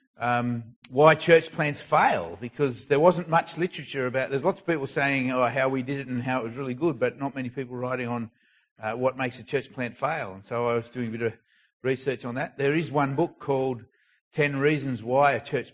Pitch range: 115-140 Hz